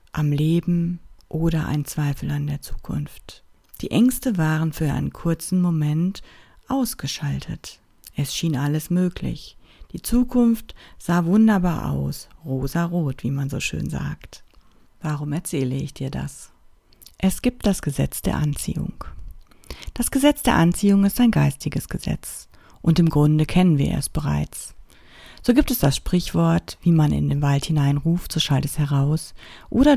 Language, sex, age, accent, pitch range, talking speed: German, female, 50-69, German, 140-175 Hz, 145 wpm